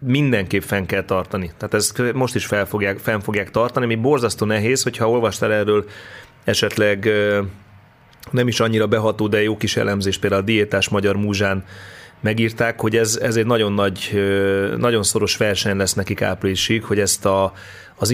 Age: 30-49